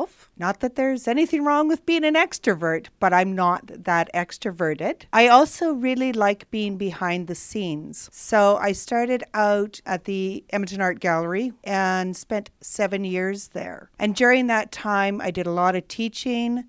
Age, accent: 40-59, American